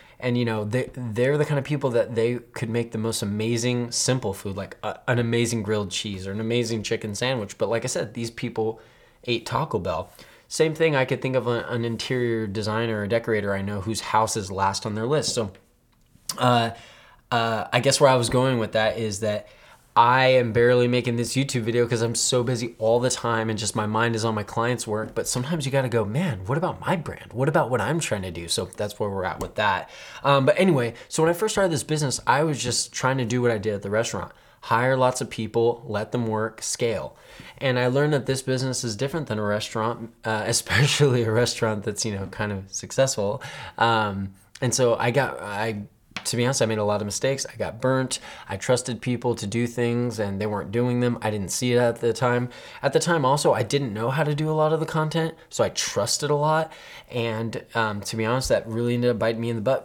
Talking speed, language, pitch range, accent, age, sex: 240 wpm, English, 110-130 Hz, American, 20-39, male